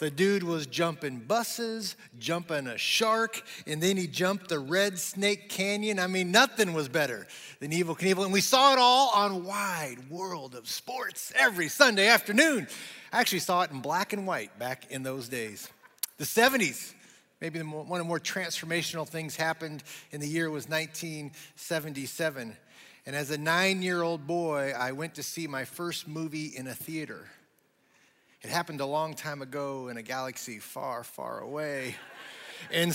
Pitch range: 150-190 Hz